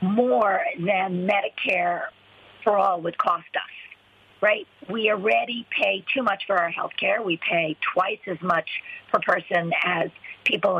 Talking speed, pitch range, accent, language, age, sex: 150 wpm, 175-240 Hz, American, English, 50-69, female